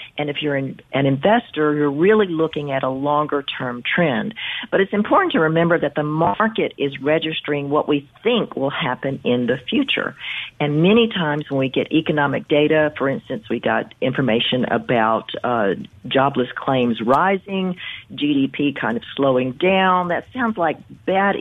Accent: American